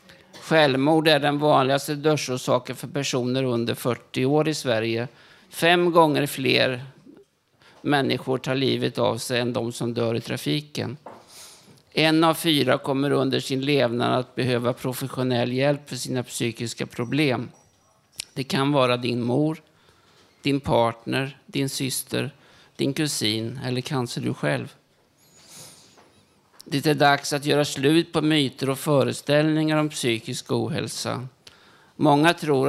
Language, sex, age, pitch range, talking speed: Swedish, male, 50-69, 125-145 Hz, 130 wpm